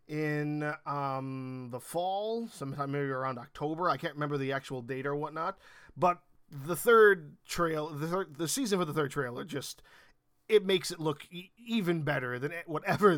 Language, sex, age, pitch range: English, male, 20-39, 135-165 Hz